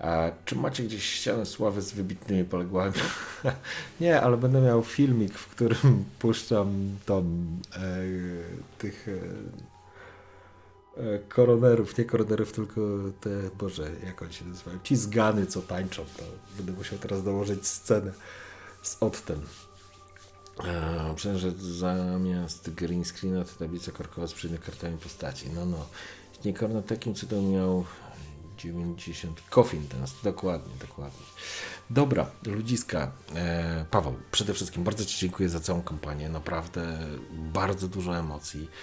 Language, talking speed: Polish, 130 wpm